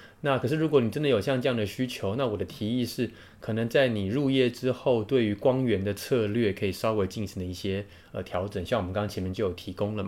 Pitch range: 100-130 Hz